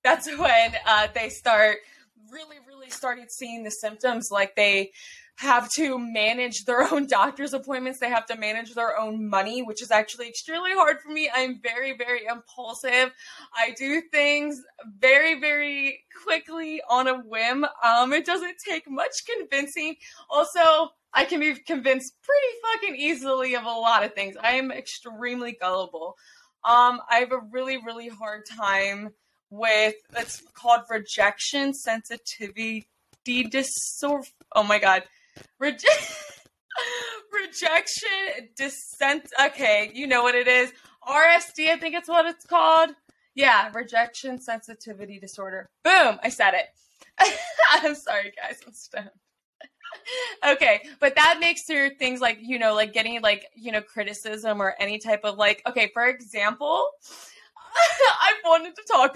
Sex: female